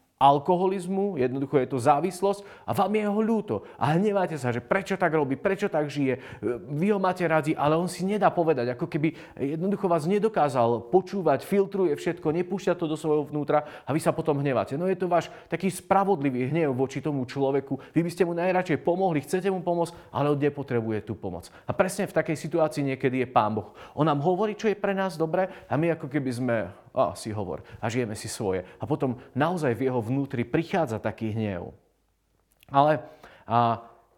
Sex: male